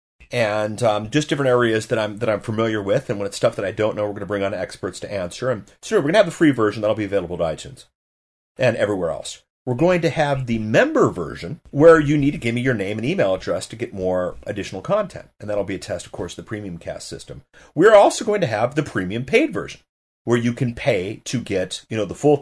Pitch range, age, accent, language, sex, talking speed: 95-125 Hz, 40-59, American, English, male, 260 wpm